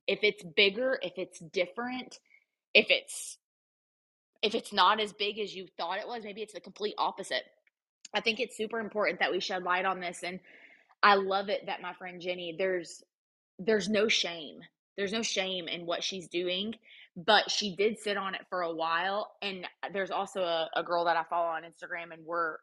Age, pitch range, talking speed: 20-39, 175-210 Hz, 200 wpm